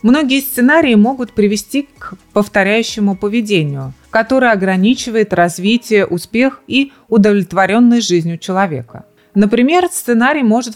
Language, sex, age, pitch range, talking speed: Russian, female, 30-49, 185-245 Hz, 100 wpm